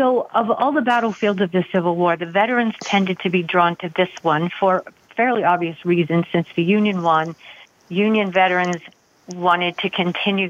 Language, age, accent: English, 50-69, American